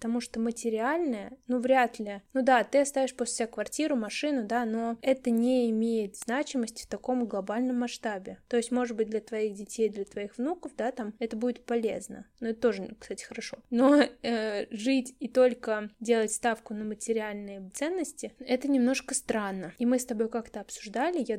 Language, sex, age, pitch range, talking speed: Russian, female, 20-39, 220-250 Hz, 180 wpm